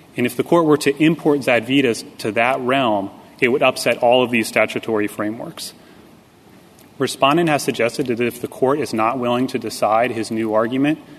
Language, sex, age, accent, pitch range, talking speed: English, male, 30-49, American, 115-140 Hz, 180 wpm